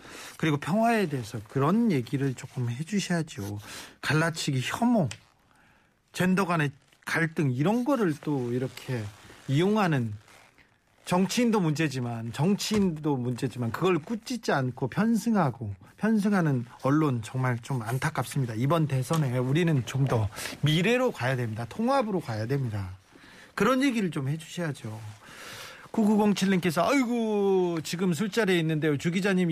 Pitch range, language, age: 135-180 Hz, Korean, 40-59